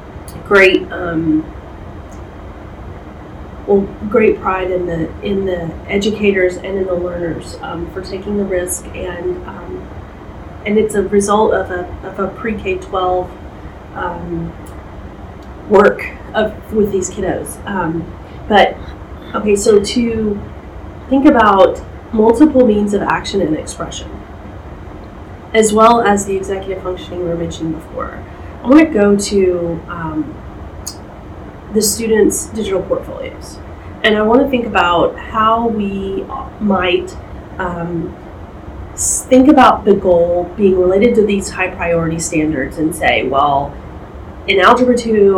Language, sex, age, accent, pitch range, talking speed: English, female, 30-49, American, 170-215 Hz, 125 wpm